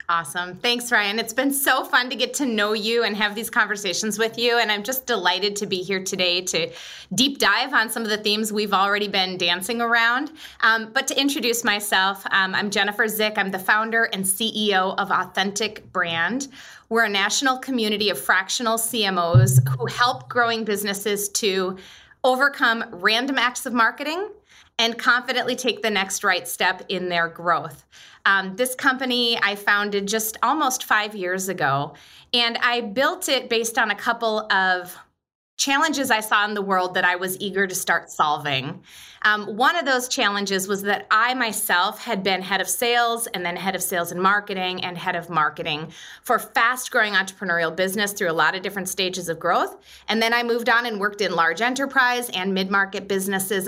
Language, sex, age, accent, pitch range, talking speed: English, female, 20-39, American, 190-235 Hz, 185 wpm